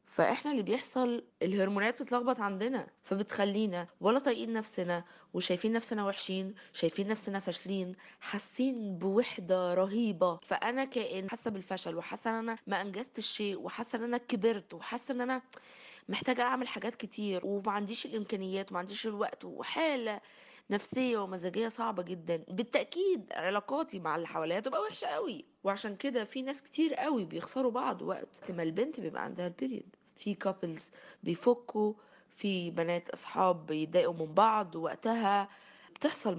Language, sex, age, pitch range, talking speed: Arabic, female, 20-39, 185-245 Hz, 135 wpm